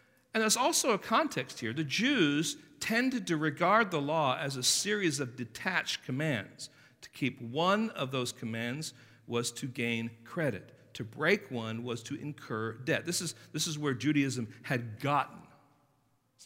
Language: English